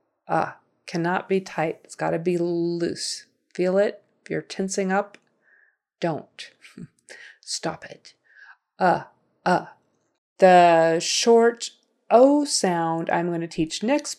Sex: female